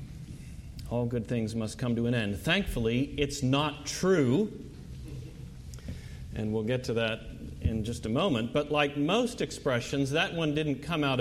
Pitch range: 115-150 Hz